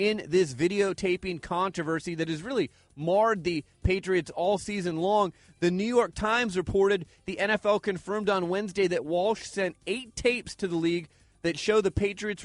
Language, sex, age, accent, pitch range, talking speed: English, male, 30-49, American, 175-210 Hz, 170 wpm